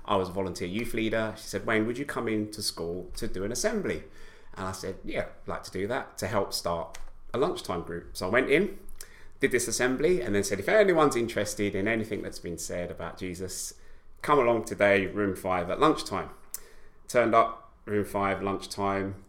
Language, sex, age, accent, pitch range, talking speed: English, male, 30-49, British, 95-110 Hz, 200 wpm